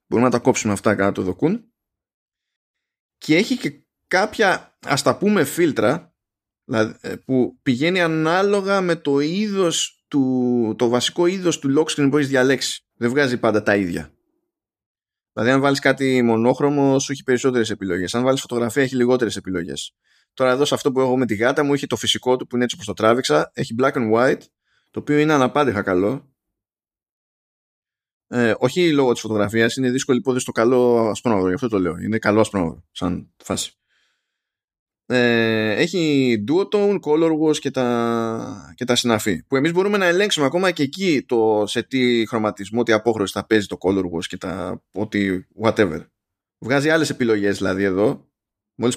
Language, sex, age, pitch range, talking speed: Greek, male, 20-39, 110-145 Hz, 165 wpm